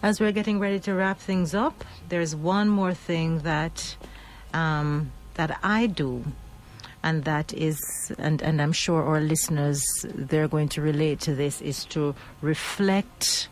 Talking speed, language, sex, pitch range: 155 wpm, English, female, 145-185 Hz